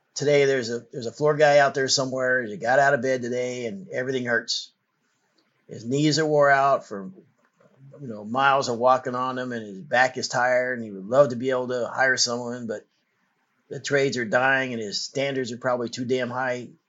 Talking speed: 215 wpm